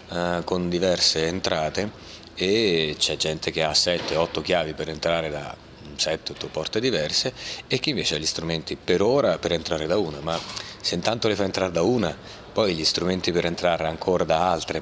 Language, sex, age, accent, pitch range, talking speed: Italian, male, 30-49, native, 80-95 Hz, 180 wpm